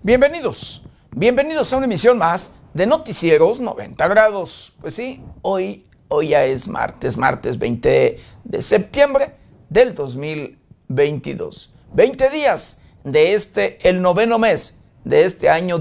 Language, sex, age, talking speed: Spanish, male, 50-69, 125 wpm